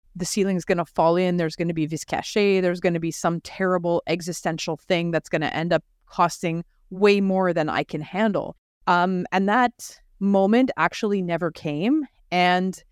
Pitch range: 165-195 Hz